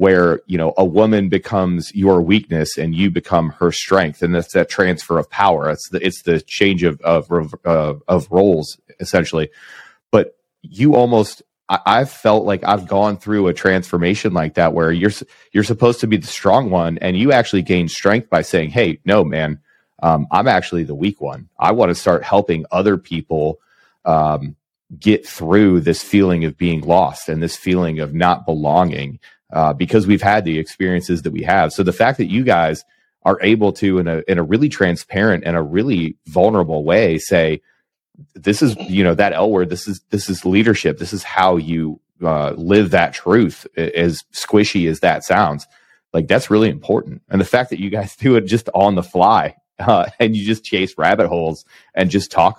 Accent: American